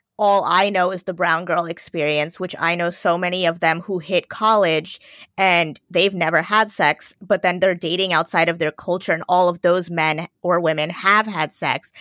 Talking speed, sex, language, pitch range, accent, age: 205 wpm, female, English, 160-195 Hz, American, 20-39